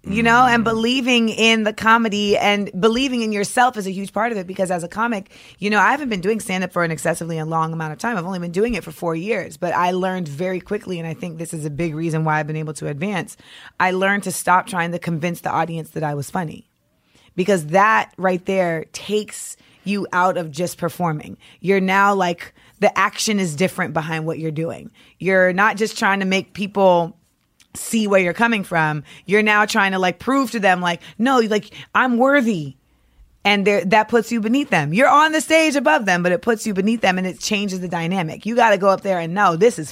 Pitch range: 170-215 Hz